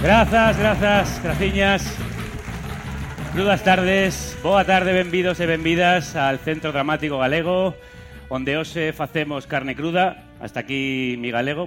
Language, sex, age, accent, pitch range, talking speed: Spanish, male, 30-49, Spanish, 120-170 Hz, 125 wpm